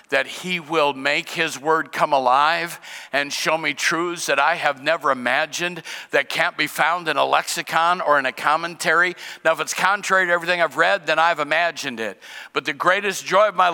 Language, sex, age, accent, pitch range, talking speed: English, male, 50-69, American, 170-265 Hz, 200 wpm